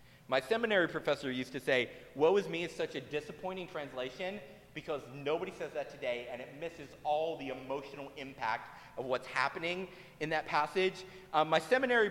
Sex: male